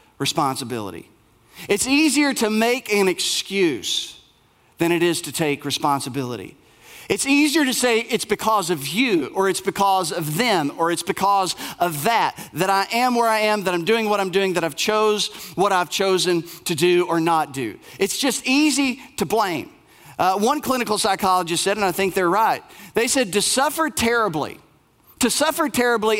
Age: 40-59